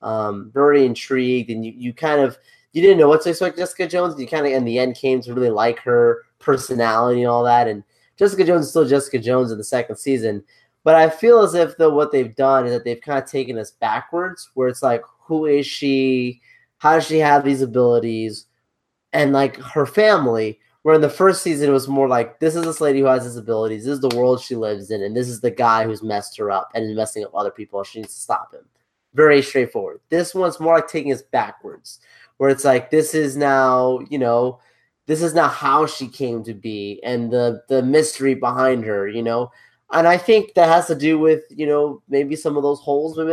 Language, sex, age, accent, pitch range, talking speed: English, male, 20-39, American, 120-155 Hz, 230 wpm